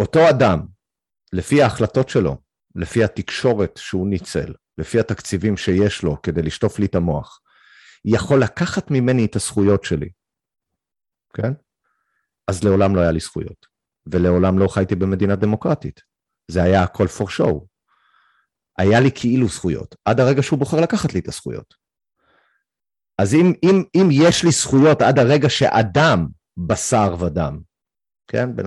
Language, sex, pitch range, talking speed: Hebrew, male, 95-135 Hz, 140 wpm